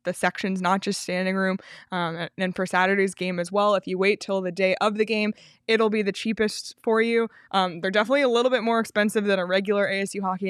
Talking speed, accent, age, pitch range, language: 235 wpm, American, 20-39, 180-225 Hz, English